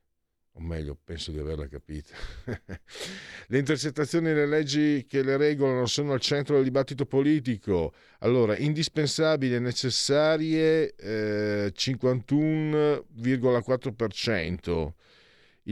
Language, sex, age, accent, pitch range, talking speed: Italian, male, 50-69, native, 85-130 Hz, 95 wpm